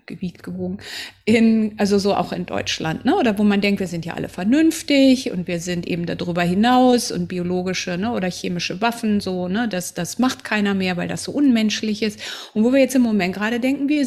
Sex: female